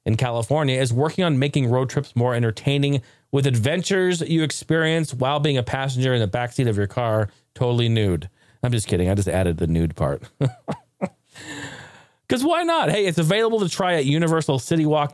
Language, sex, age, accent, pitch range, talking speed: English, male, 40-59, American, 115-155 Hz, 180 wpm